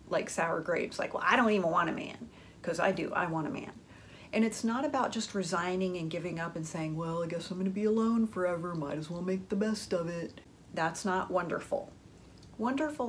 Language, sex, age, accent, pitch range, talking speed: English, female, 40-59, American, 170-215 Hz, 230 wpm